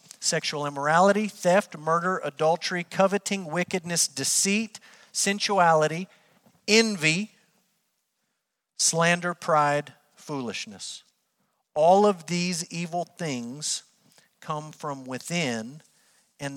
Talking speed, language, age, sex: 80 wpm, English, 50-69, male